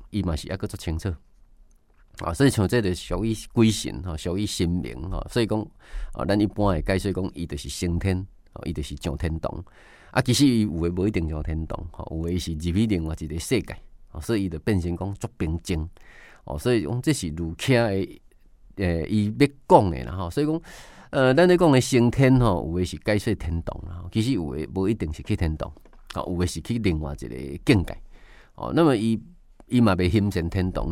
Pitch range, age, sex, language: 85-120 Hz, 30-49, male, Chinese